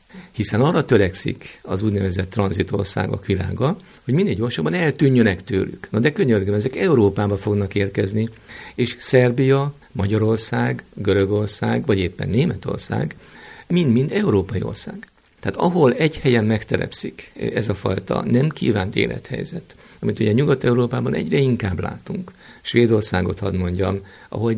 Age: 50-69